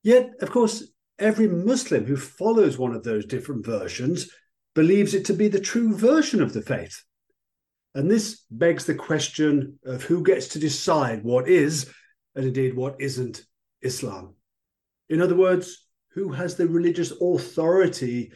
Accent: British